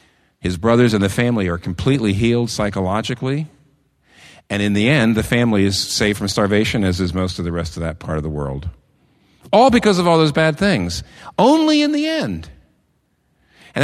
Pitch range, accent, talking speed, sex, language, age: 85-130 Hz, American, 185 wpm, male, English, 50-69